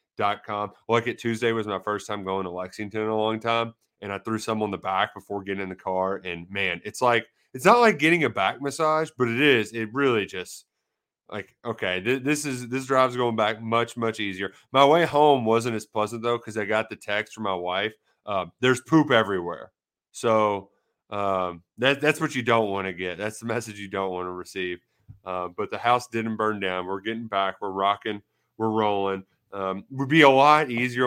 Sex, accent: male, American